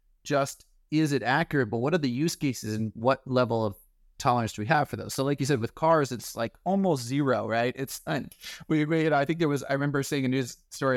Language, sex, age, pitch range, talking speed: English, male, 30-49, 115-155 Hz, 265 wpm